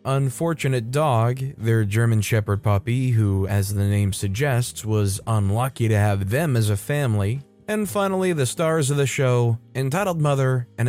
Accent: American